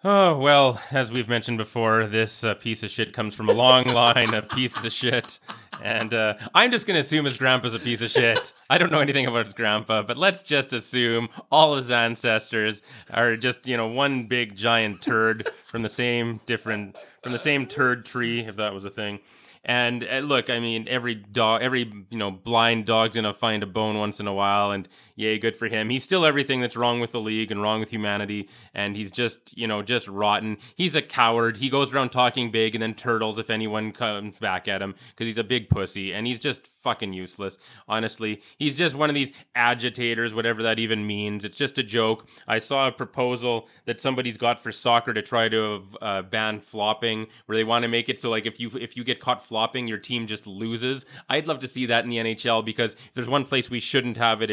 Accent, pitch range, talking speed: American, 110-125 Hz, 230 wpm